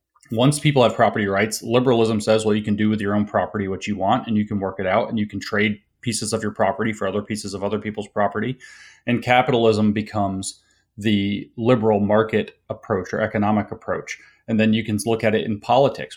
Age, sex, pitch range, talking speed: 30-49, male, 100-115 Hz, 215 wpm